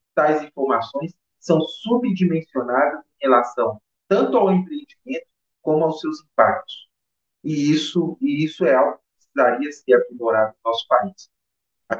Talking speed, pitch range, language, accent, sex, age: 135 wpm, 160-225 Hz, Portuguese, Brazilian, male, 40-59